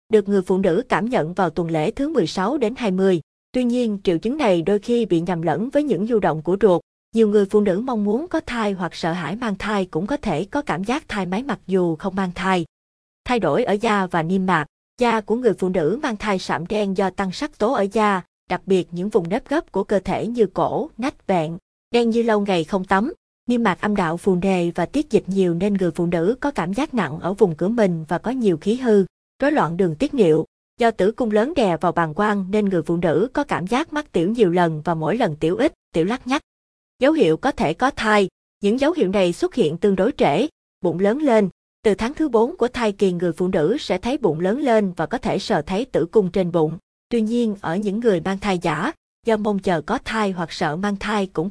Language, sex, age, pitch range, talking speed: Vietnamese, female, 20-39, 180-230 Hz, 250 wpm